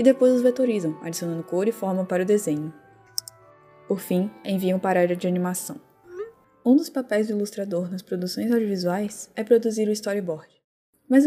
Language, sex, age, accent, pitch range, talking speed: Portuguese, female, 10-29, Brazilian, 180-240 Hz, 170 wpm